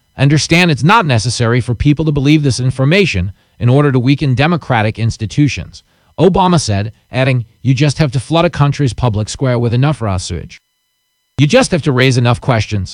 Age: 40-59